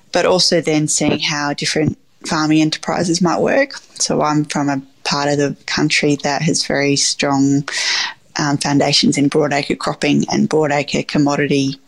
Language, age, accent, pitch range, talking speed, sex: English, 20-39, Australian, 145-170 Hz, 150 wpm, female